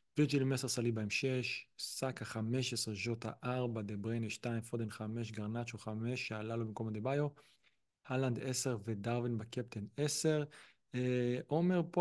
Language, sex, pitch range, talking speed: Hebrew, male, 115-140 Hz, 140 wpm